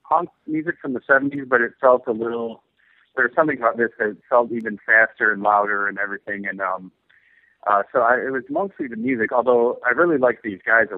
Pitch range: 100-125 Hz